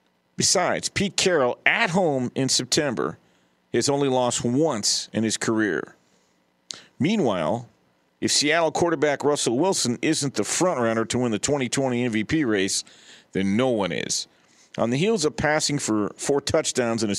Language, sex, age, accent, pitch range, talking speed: English, male, 50-69, American, 105-150 Hz, 150 wpm